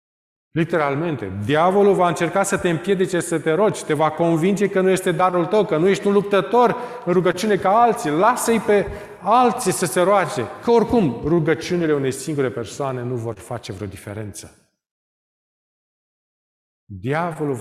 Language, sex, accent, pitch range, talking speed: Romanian, male, native, 120-175 Hz, 155 wpm